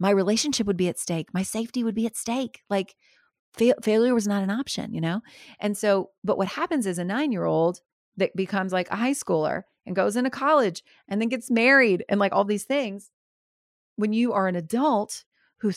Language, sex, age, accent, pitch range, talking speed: English, female, 30-49, American, 165-215 Hz, 200 wpm